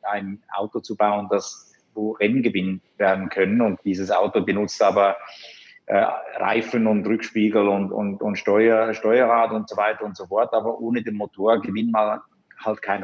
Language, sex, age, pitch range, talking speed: German, male, 50-69, 105-115 Hz, 160 wpm